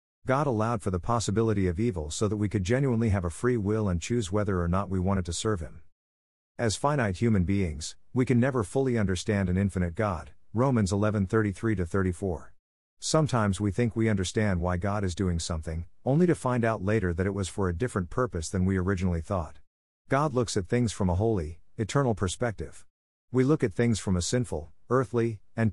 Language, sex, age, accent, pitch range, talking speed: English, male, 50-69, American, 90-115 Hz, 200 wpm